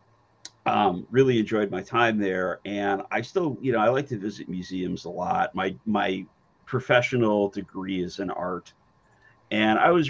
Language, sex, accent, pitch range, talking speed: English, male, American, 100-125 Hz, 165 wpm